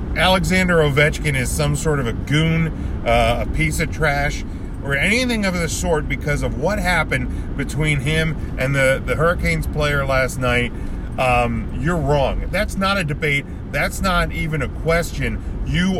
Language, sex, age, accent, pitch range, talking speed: English, male, 40-59, American, 115-155 Hz, 165 wpm